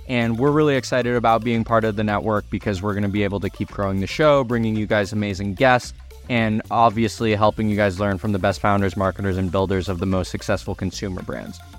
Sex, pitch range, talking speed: male, 105-120 Hz, 230 wpm